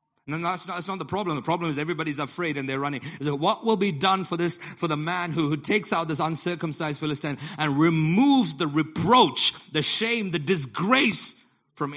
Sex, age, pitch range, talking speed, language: male, 30-49, 125-155 Hz, 205 wpm, English